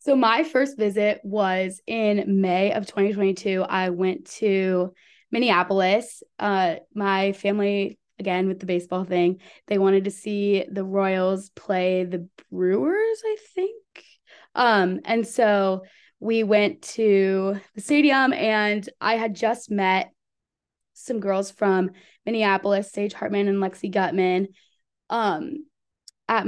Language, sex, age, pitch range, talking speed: English, female, 20-39, 190-220 Hz, 125 wpm